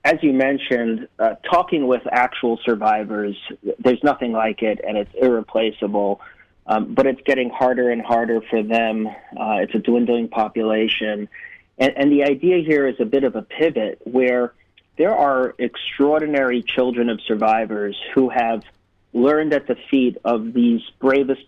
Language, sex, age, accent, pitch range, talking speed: English, male, 30-49, American, 115-135 Hz, 155 wpm